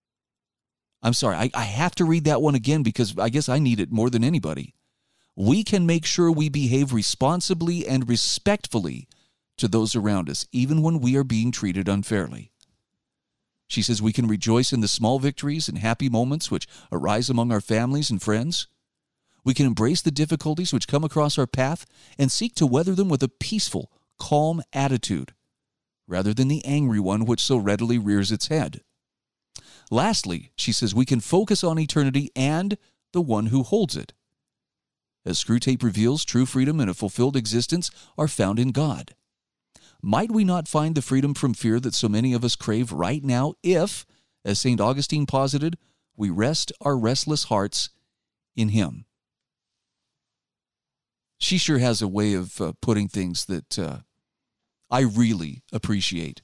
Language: English